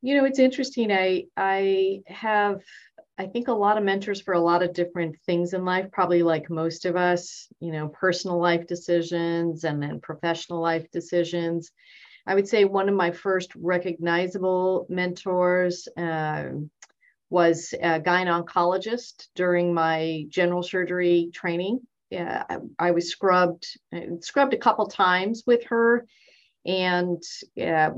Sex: female